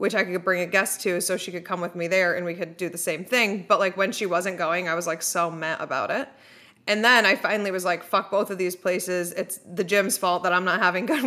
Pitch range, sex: 175-205 Hz, female